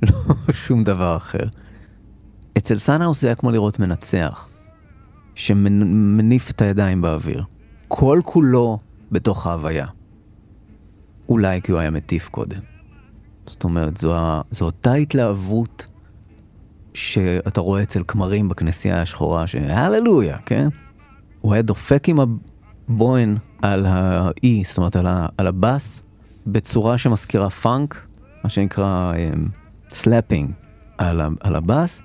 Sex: male